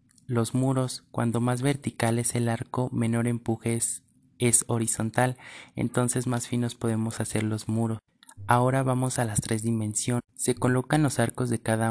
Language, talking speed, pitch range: Spanish, 160 wpm, 110-125 Hz